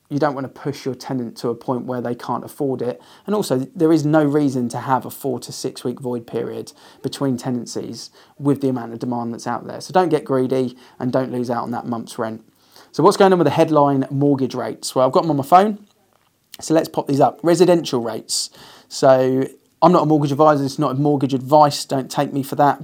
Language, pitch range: English, 125-145 Hz